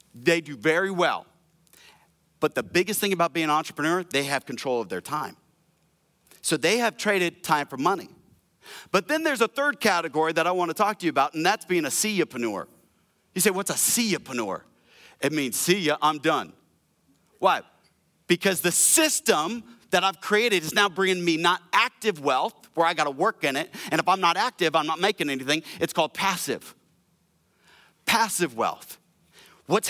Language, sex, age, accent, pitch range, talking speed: English, male, 40-59, American, 165-215 Hz, 185 wpm